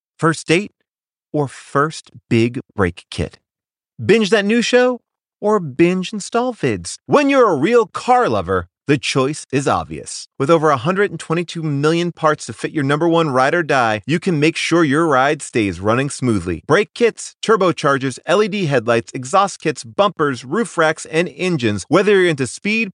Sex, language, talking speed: male, English, 165 wpm